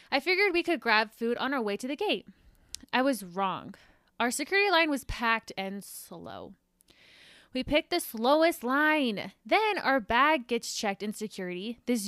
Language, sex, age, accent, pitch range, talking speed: English, female, 20-39, American, 215-280 Hz, 175 wpm